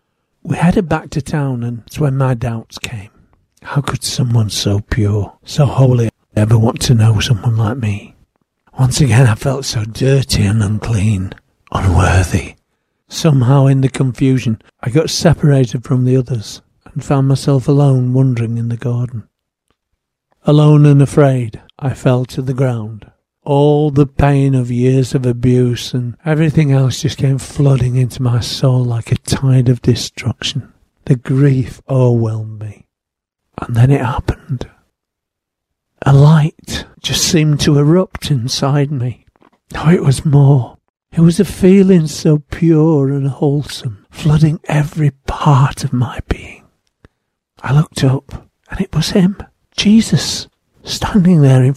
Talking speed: 145 wpm